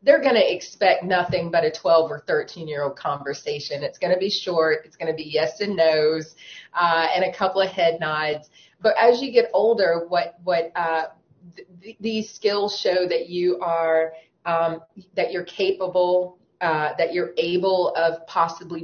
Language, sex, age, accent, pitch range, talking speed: English, female, 30-49, American, 165-205 Hz, 180 wpm